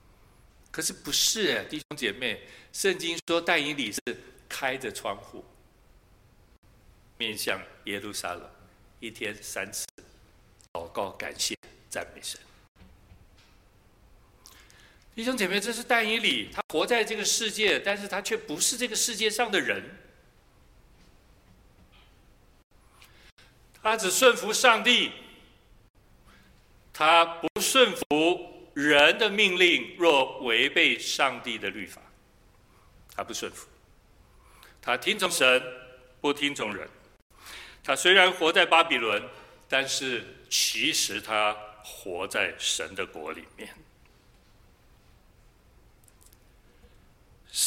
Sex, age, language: male, 60-79, Chinese